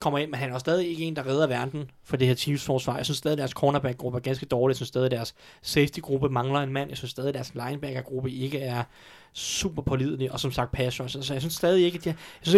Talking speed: 265 wpm